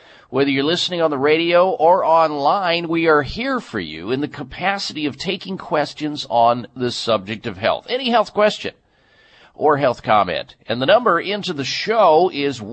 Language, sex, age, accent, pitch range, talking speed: English, male, 50-69, American, 125-180 Hz, 175 wpm